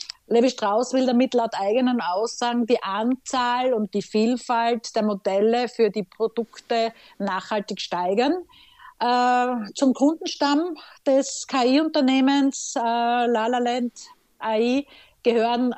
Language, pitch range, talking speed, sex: German, 215-260 Hz, 105 wpm, female